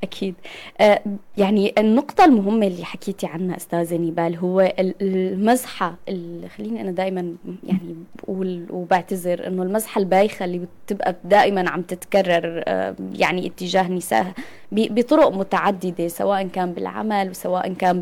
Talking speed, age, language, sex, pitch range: 120 wpm, 20-39, Arabic, female, 185-235 Hz